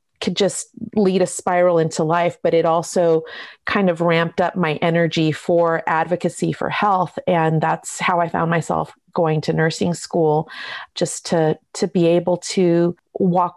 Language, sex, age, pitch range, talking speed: English, female, 30-49, 165-190 Hz, 165 wpm